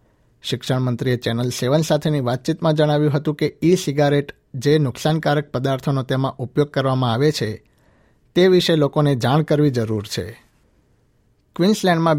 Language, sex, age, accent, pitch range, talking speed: Gujarati, male, 60-79, native, 120-150 Hz, 135 wpm